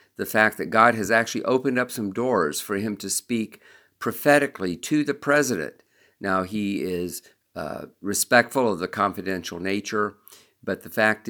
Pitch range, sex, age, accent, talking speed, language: 95-120 Hz, male, 50-69, American, 160 wpm, English